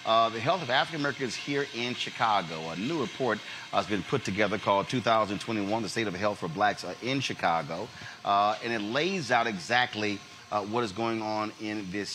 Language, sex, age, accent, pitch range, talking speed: English, male, 30-49, American, 100-125 Hz, 200 wpm